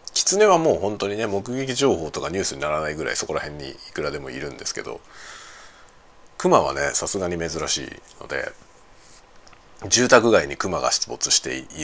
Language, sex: Japanese, male